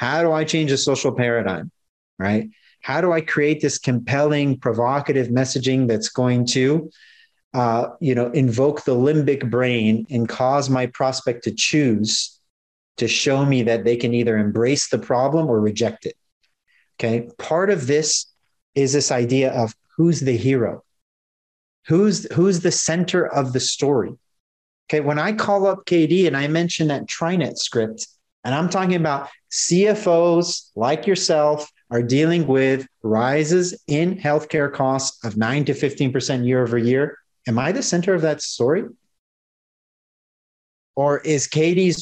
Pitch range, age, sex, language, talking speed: 125-160 Hz, 40-59, male, English, 155 wpm